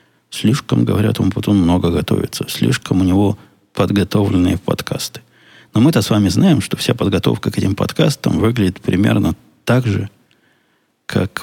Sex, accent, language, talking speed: male, native, Russian, 140 wpm